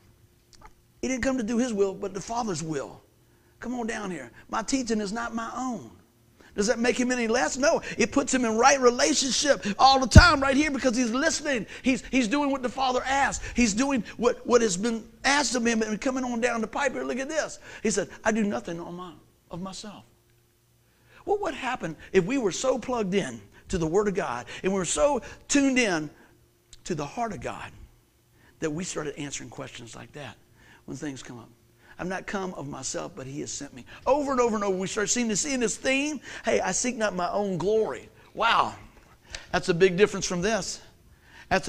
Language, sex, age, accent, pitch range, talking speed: English, male, 50-69, American, 165-245 Hz, 215 wpm